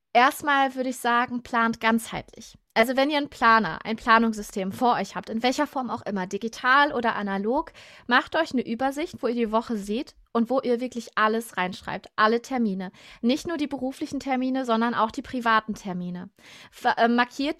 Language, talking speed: German, 180 wpm